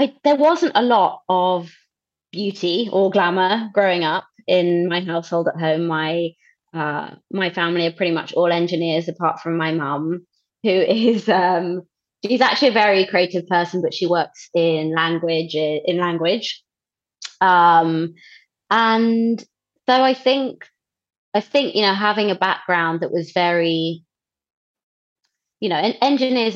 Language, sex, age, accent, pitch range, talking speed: English, female, 20-39, British, 165-200 Hz, 140 wpm